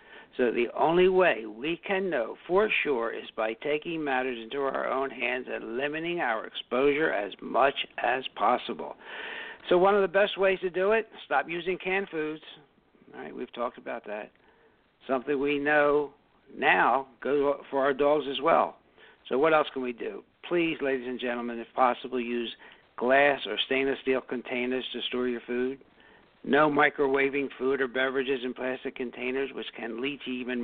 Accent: American